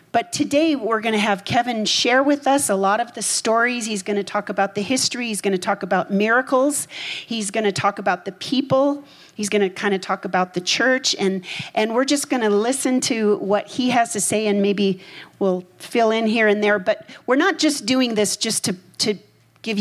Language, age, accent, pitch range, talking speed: English, 40-59, American, 185-235 Hz, 225 wpm